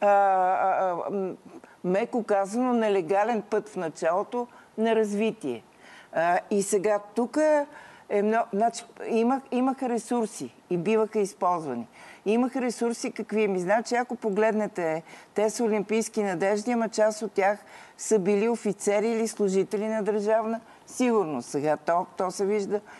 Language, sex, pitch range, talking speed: Bulgarian, female, 195-235 Hz, 125 wpm